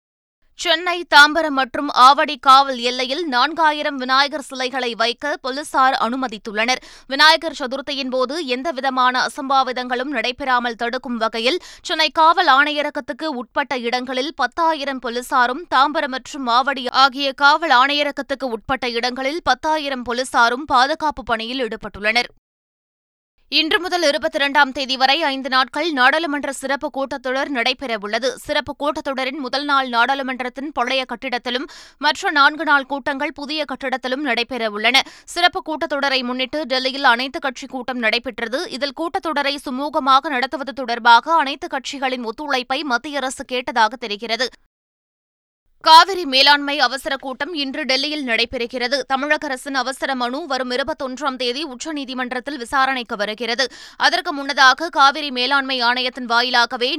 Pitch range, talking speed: 250-290 Hz, 115 wpm